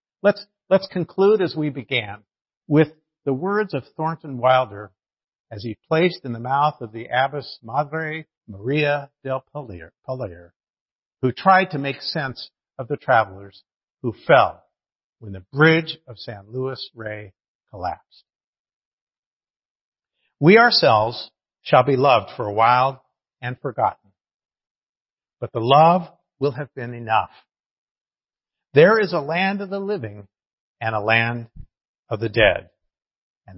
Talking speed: 130 wpm